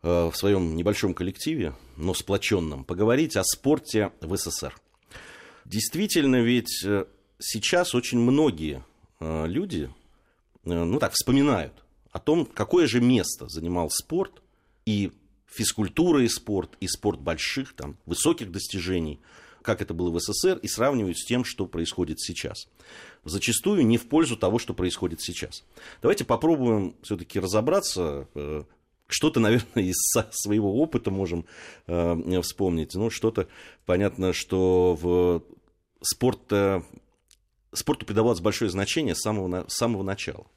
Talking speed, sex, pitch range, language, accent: 125 wpm, male, 85-115 Hz, Russian, native